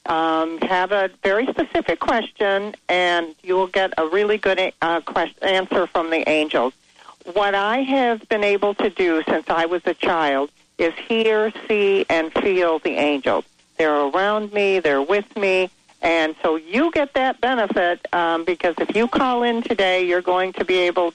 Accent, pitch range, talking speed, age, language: American, 170-215 Hz, 175 wpm, 50-69, English